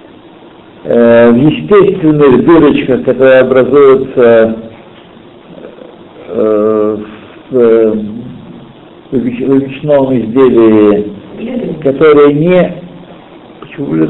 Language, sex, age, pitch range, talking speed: Russian, male, 60-79, 125-180 Hz, 45 wpm